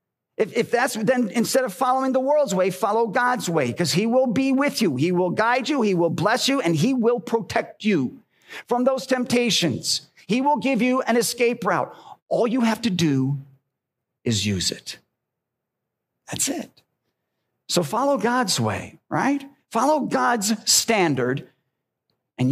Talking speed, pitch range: 160 wpm, 170-240 Hz